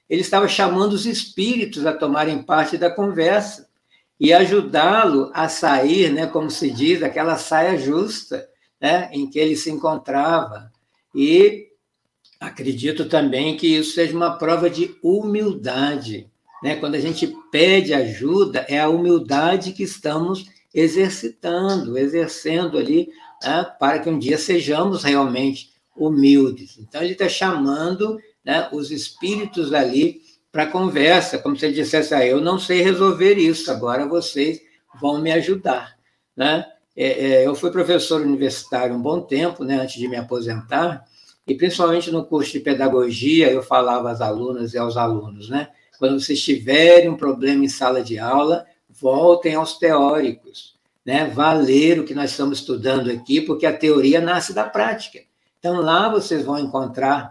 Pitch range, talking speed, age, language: 140-180 Hz, 150 wpm, 60-79, Portuguese